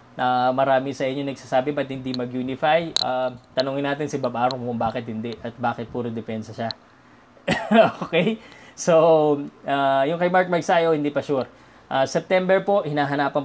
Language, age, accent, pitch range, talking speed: Filipino, 20-39, native, 130-165 Hz, 165 wpm